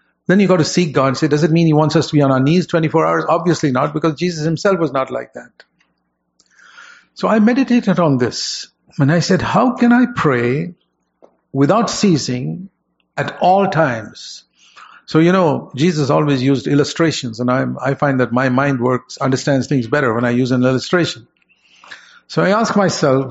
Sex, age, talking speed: male, 50-69, 190 wpm